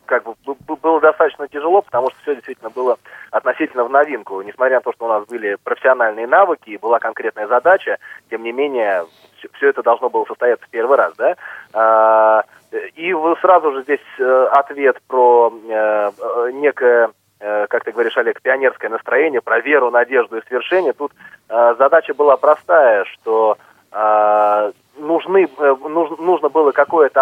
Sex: male